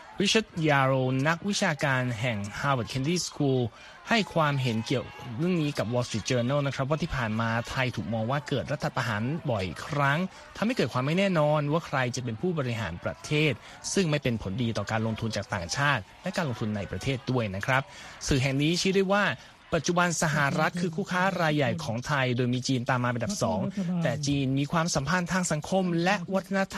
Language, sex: Thai, male